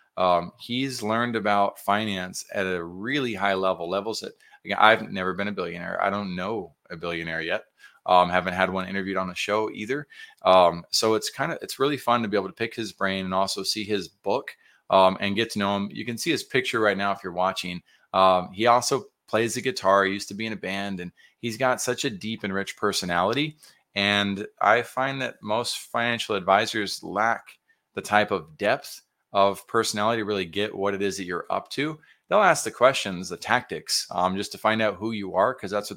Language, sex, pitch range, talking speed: English, male, 95-110 Hz, 215 wpm